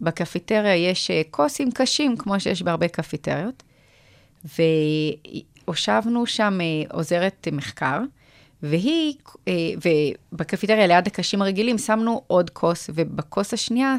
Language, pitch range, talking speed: Hebrew, 155-205 Hz, 90 wpm